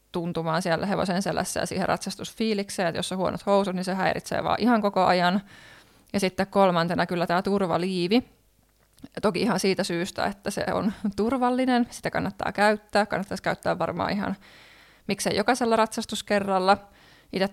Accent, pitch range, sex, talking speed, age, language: native, 175-200 Hz, female, 155 wpm, 20-39, Finnish